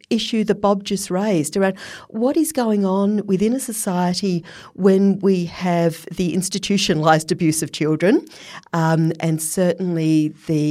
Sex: female